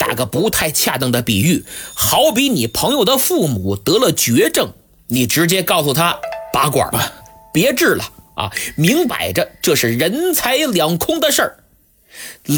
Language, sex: Chinese, male